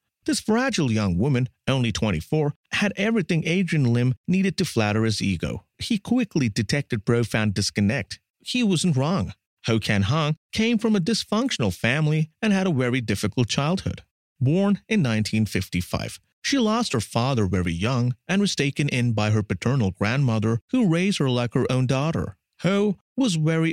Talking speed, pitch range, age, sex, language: 160 wpm, 105-170 Hz, 30-49, male, English